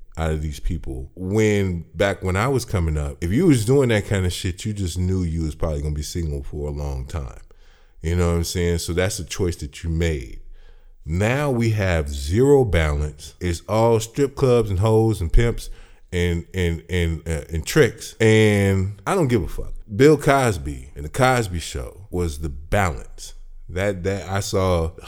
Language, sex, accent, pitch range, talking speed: English, male, American, 80-110 Hz, 200 wpm